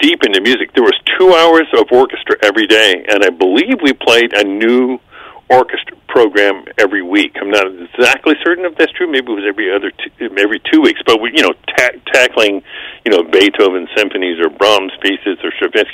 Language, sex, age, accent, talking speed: English, male, 50-69, American, 190 wpm